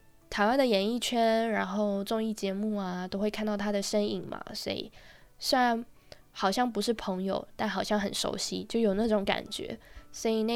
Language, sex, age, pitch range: Chinese, female, 10-29, 200-245 Hz